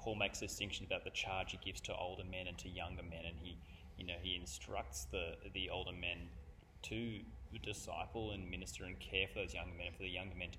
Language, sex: English, male